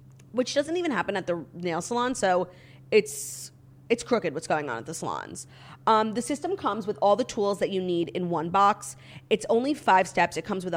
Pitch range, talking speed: 170-210 Hz, 215 wpm